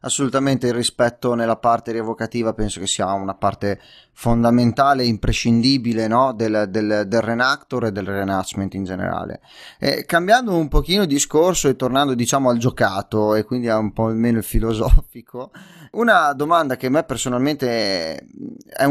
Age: 30-49